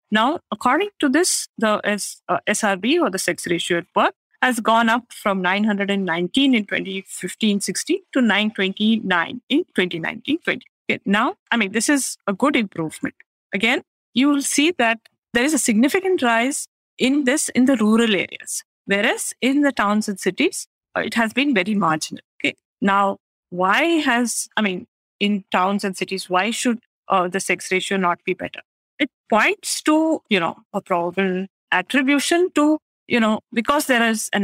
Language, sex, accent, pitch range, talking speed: English, female, Indian, 195-260 Hz, 165 wpm